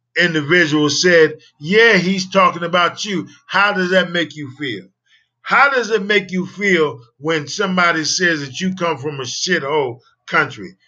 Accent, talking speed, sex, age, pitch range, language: American, 160 wpm, male, 50-69, 150-190 Hz, English